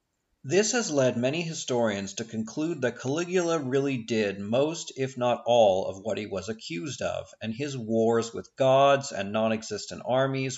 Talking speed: 165 wpm